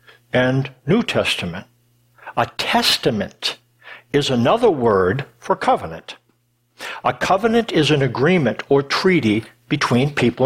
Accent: American